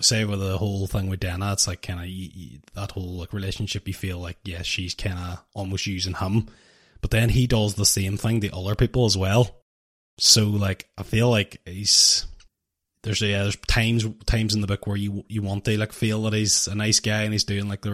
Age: 20-39